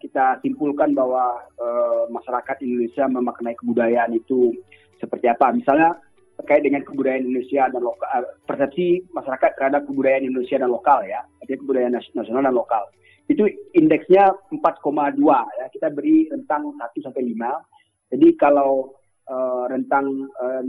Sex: male